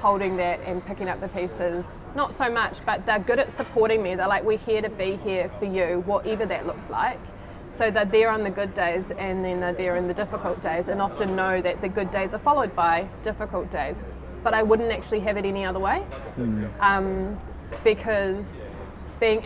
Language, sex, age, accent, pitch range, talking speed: English, female, 20-39, Australian, 185-215 Hz, 210 wpm